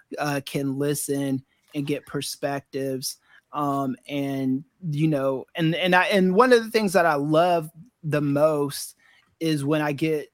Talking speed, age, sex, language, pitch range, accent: 155 wpm, 30-49, male, English, 145-175 Hz, American